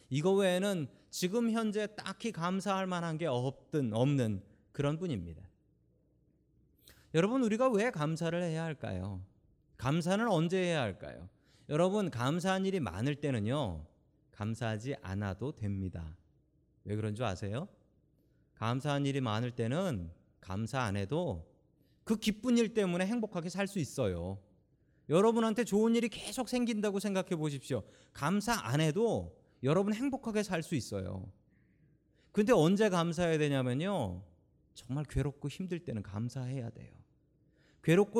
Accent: native